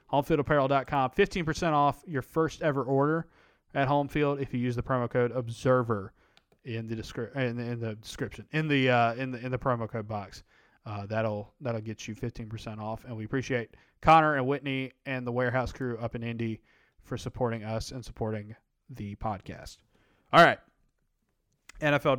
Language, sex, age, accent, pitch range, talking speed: English, male, 20-39, American, 120-150 Hz, 170 wpm